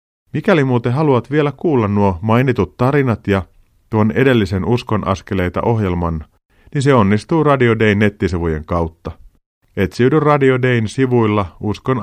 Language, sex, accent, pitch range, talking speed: Finnish, male, native, 90-125 Hz, 125 wpm